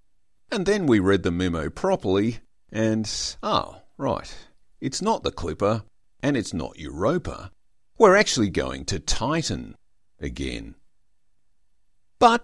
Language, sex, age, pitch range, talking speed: English, male, 50-69, 95-140 Hz, 120 wpm